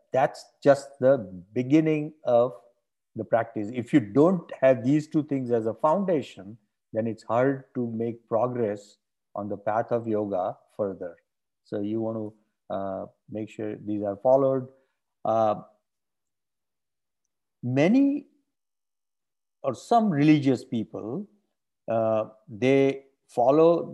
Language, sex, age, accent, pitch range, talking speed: English, male, 50-69, Indian, 105-135 Hz, 120 wpm